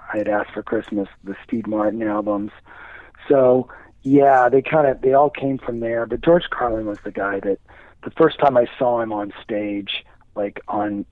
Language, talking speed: English, 185 wpm